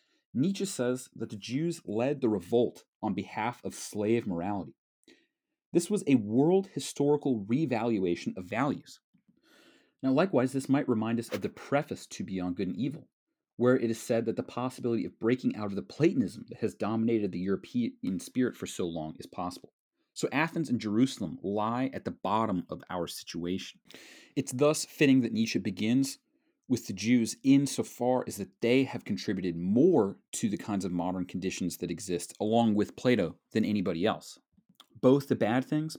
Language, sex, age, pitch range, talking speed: English, male, 30-49, 100-140 Hz, 175 wpm